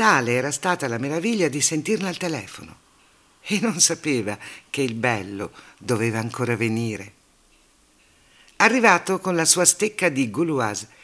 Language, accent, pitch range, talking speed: Italian, native, 120-170 Hz, 135 wpm